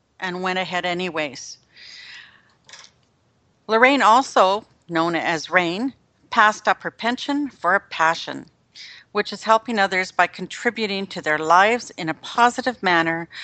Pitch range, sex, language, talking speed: 170-210 Hz, female, English, 130 wpm